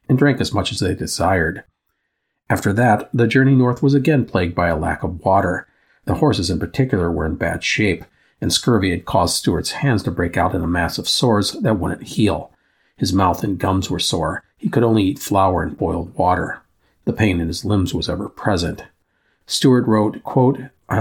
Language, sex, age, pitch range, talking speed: English, male, 50-69, 95-125 Hz, 195 wpm